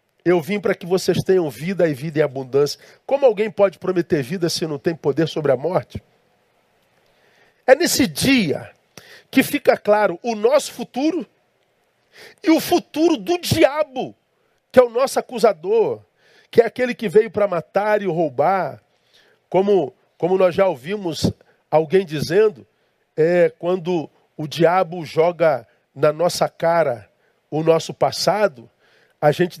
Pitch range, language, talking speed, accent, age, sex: 165-220 Hz, Portuguese, 140 wpm, Brazilian, 50-69, male